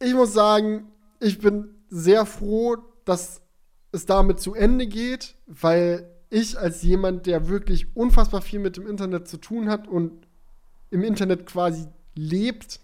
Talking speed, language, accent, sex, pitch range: 150 wpm, German, German, male, 165-210 Hz